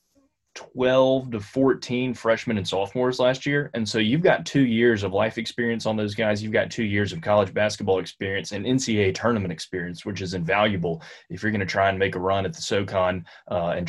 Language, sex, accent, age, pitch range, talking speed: English, male, American, 20-39, 95-105 Hz, 210 wpm